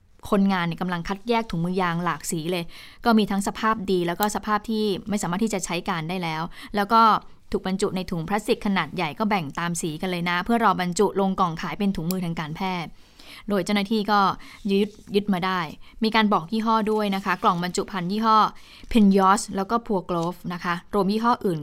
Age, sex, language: 20-39, female, Thai